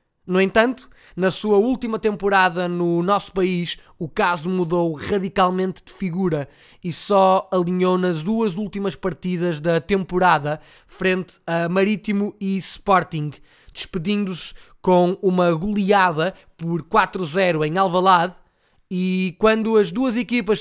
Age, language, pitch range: 20-39, Portuguese, 170-200 Hz